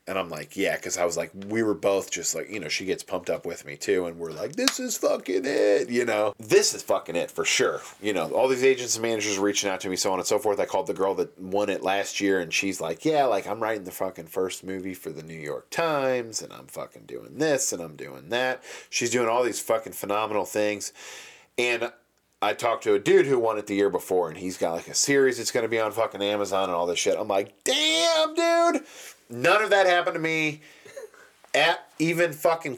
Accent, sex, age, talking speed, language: American, male, 30-49, 250 wpm, English